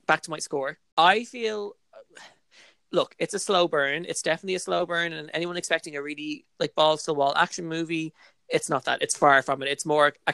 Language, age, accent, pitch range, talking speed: English, 20-39, Irish, 145-185 Hz, 220 wpm